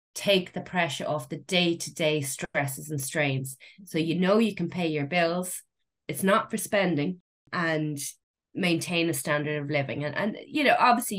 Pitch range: 145-175 Hz